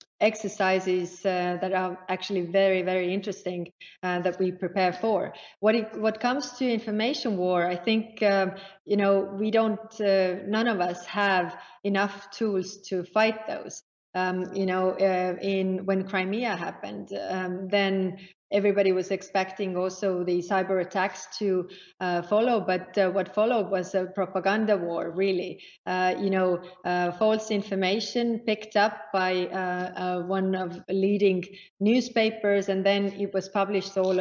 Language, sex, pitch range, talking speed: English, female, 185-210 Hz, 155 wpm